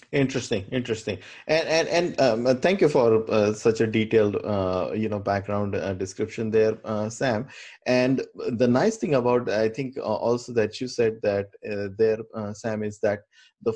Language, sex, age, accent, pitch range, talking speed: English, male, 20-39, Indian, 105-125 Hz, 185 wpm